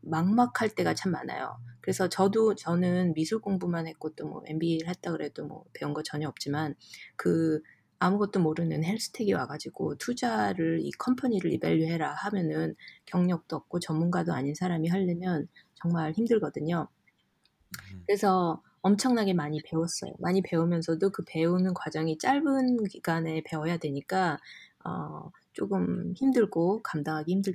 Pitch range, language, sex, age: 155-195 Hz, Korean, female, 20-39